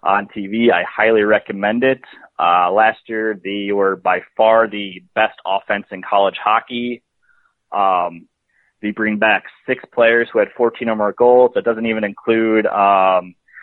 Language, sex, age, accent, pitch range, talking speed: English, male, 20-39, American, 105-125 Hz, 160 wpm